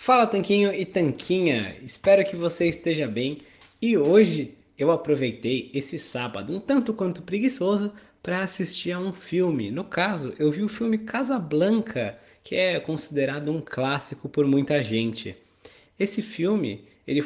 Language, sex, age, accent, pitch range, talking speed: Portuguese, male, 20-39, Brazilian, 145-195 Hz, 145 wpm